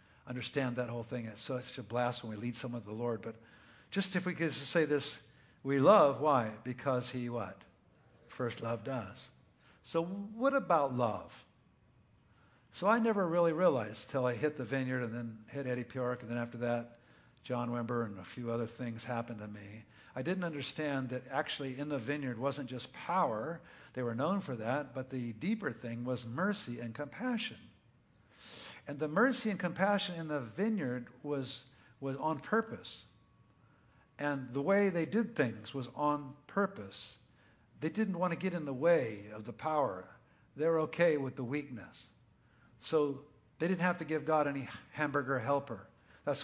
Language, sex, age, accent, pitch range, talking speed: English, male, 50-69, American, 120-150 Hz, 175 wpm